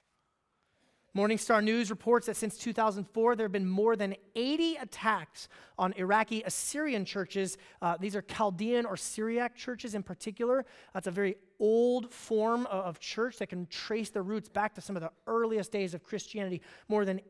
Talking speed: 170 wpm